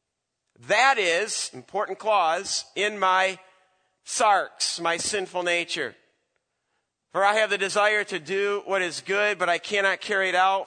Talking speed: 145 wpm